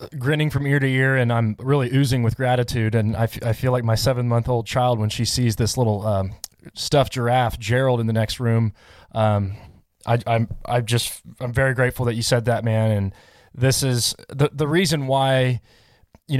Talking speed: 205 wpm